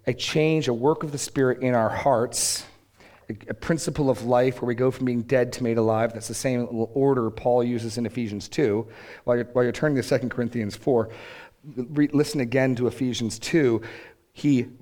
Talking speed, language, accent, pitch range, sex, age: 205 wpm, English, American, 115-145 Hz, male, 40-59